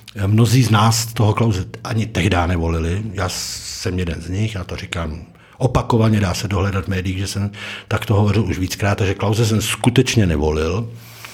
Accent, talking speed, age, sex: native, 175 wpm, 60-79, male